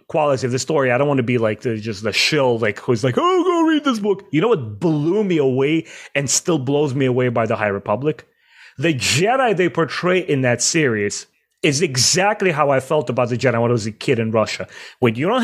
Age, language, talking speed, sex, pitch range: 30-49, English, 240 wpm, male, 130-175 Hz